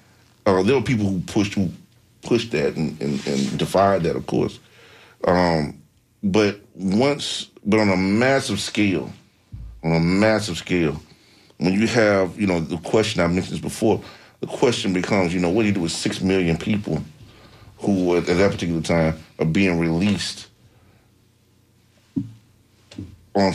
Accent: American